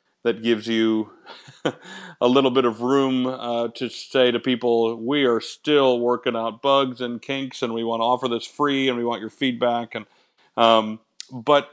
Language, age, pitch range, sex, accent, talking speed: English, 40-59, 115-130 Hz, male, American, 185 wpm